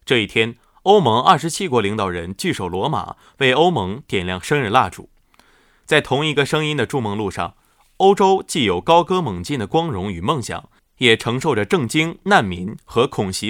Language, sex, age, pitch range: Chinese, male, 20-39, 105-165 Hz